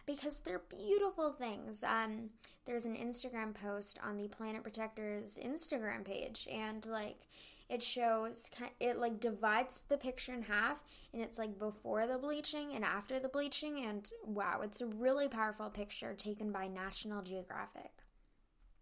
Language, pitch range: English, 220-300 Hz